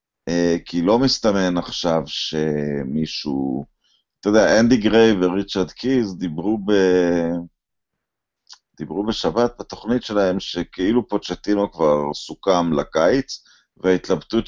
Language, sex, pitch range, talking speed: Hebrew, male, 80-110 Hz, 95 wpm